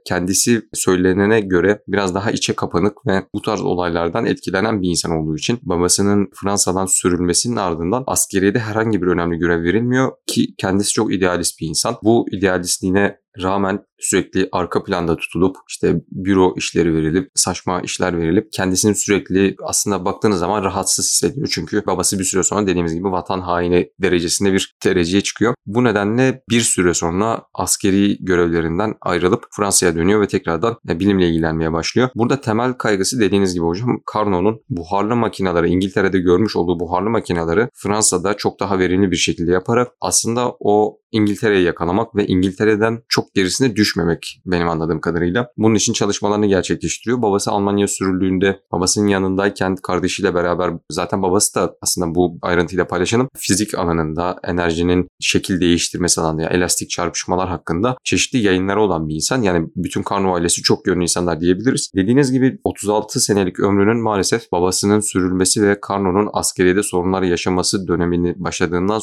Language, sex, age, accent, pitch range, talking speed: Turkish, male, 30-49, native, 90-105 Hz, 150 wpm